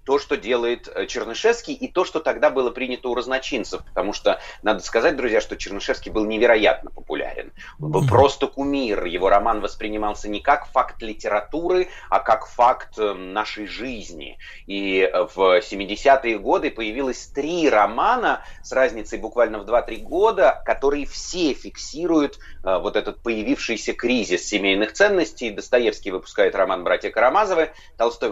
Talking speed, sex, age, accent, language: 140 wpm, male, 30-49, native, Russian